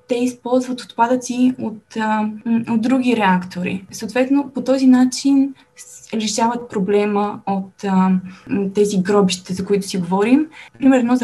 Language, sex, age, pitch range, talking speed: Bulgarian, female, 20-39, 205-245 Hz, 125 wpm